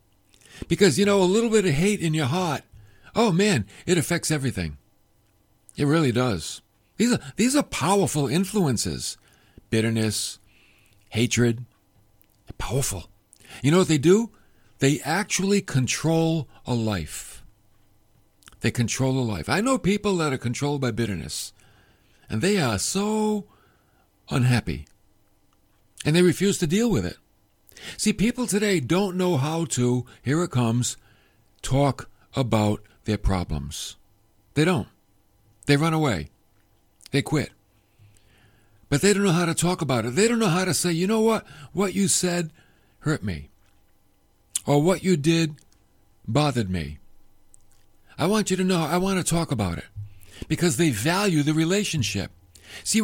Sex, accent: male, American